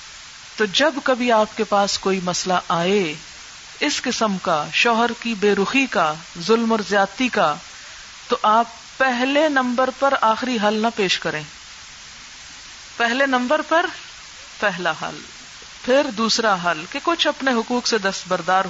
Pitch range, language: 200-260 Hz, Urdu